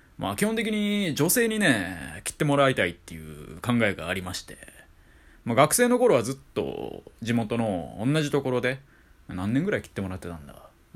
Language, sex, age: Japanese, male, 20-39